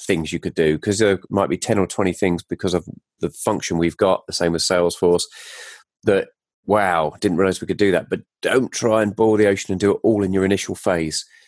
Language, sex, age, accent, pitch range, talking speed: English, male, 30-49, British, 90-105 Hz, 235 wpm